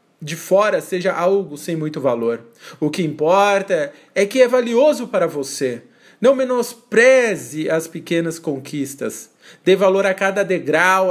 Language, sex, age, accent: Portuguese, male, 40-59, Brazilian